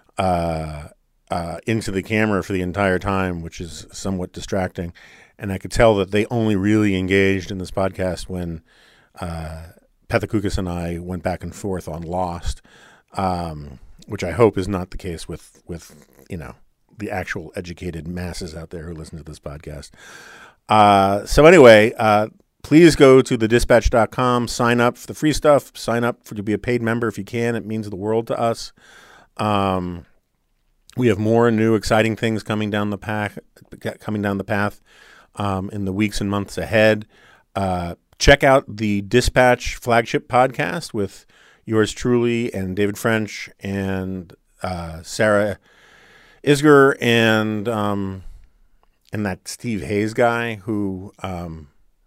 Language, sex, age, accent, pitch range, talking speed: English, male, 40-59, American, 90-110 Hz, 160 wpm